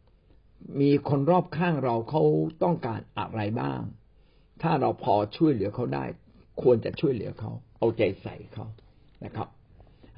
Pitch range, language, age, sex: 105-145 Hz, Thai, 60-79, male